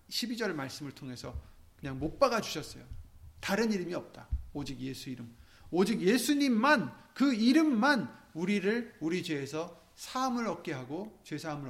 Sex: male